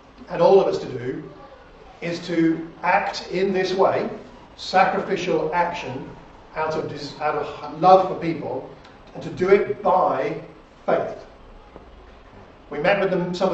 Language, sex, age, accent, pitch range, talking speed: English, male, 40-59, British, 150-185 Hz, 135 wpm